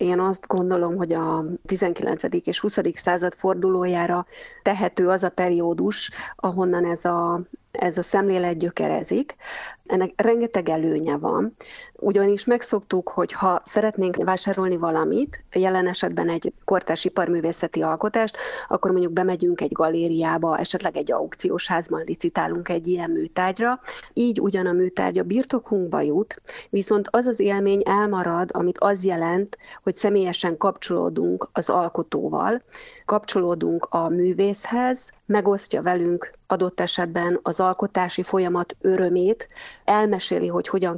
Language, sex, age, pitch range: Hungarian, female, 30-49, 175-205 Hz